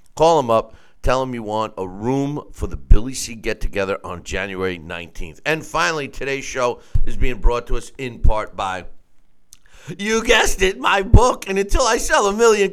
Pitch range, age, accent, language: 105-165 Hz, 50-69, American, English